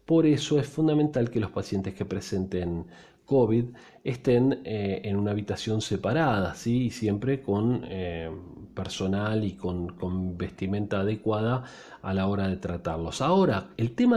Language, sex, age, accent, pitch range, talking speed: Spanish, male, 40-59, Argentinian, 100-135 Hz, 145 wpm